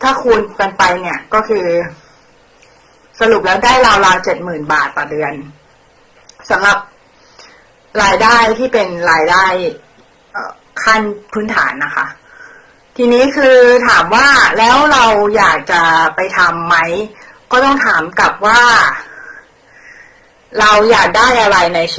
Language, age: Thai, 20-39